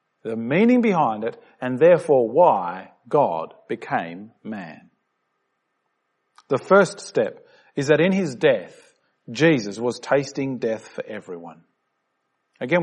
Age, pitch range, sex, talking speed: 40-59, 135-215 Hz, male, 115 wpm